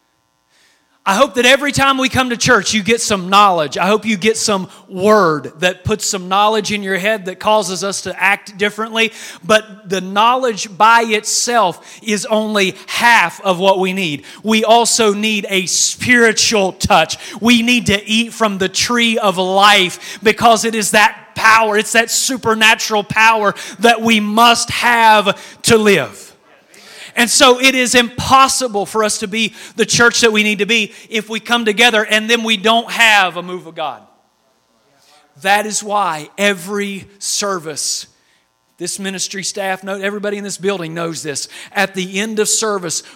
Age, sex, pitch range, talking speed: 30-49, male, 195-225 Hz, 170 wpm